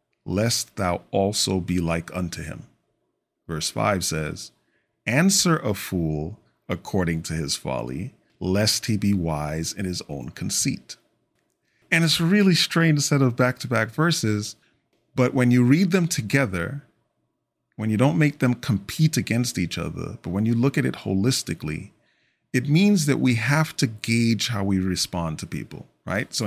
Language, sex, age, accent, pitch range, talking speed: English, male, 40-59, American, 90-125 Hz, 160 wpm